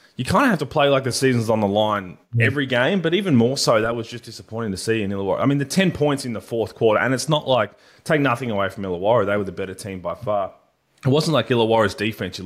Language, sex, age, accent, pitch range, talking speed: English, male, 20-39, Australian, 100-120 Hz, 275 wpm